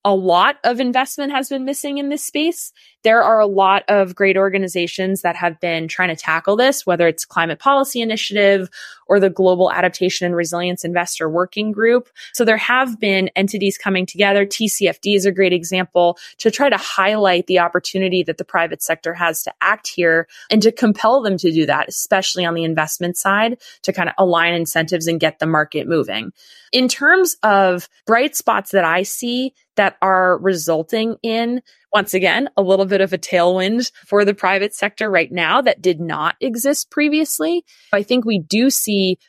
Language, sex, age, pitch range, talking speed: English, female, 20-39, 175-225 Hz, 185 wpm